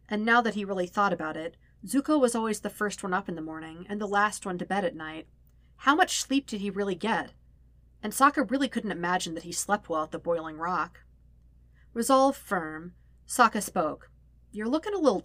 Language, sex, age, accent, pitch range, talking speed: English, female, 40-59, American, 160-220 Hz, 215 wpm